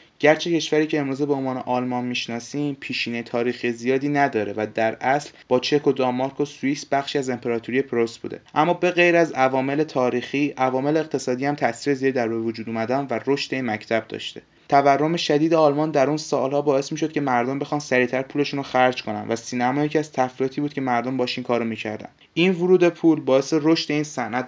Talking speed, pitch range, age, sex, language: 190 wpm, 125-150 Hz, 20-39, male, Persian